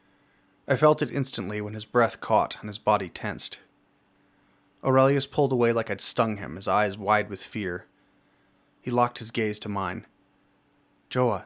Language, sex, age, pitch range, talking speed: English, male, 30-49, 110-150 Hz, 160 wpm